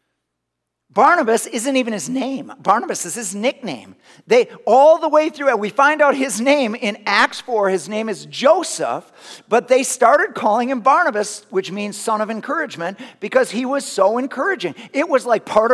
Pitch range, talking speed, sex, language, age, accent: 210-280 Hz, 175 wpm, male, English, 50-69, American